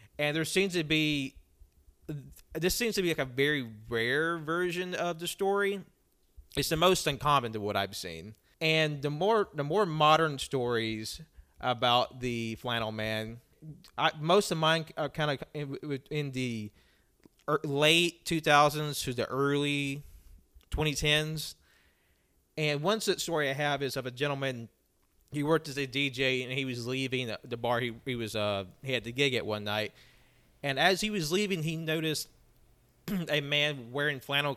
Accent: American